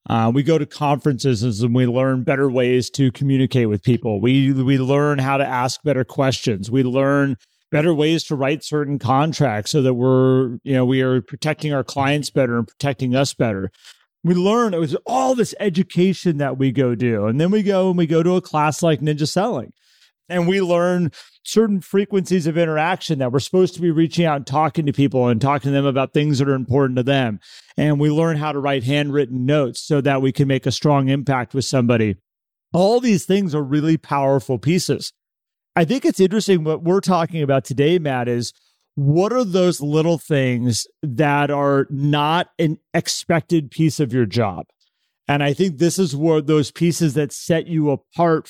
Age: 40-59